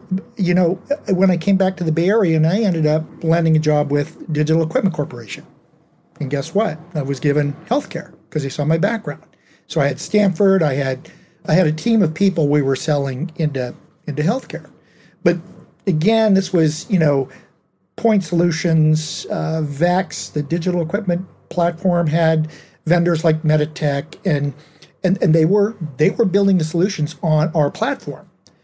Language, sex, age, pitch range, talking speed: English, male, 50-69, 150-180 Hz, 175 wpm